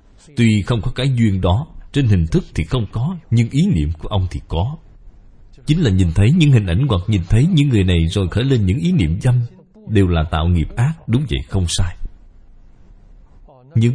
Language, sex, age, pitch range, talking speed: Vietnamese, male, 20-39, 95-135 Hz, 210 wpm